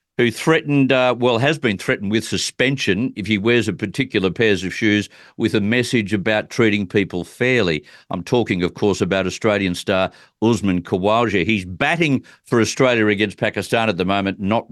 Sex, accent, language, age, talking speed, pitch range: male, Australian, English, 50-69, 175 wpm, 100-130 Hz